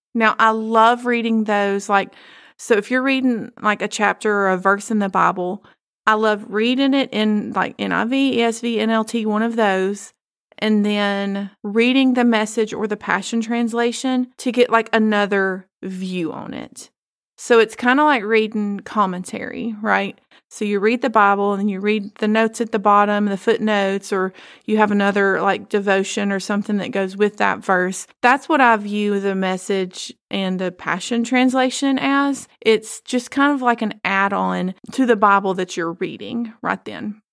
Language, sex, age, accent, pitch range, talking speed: English, female, 30-49, American, 195-235 Hz, 175 wpm